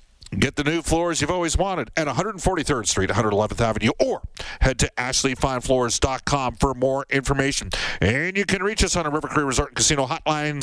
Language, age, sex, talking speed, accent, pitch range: English, 50-69, male, 180 wpm, American, 125-150 Hz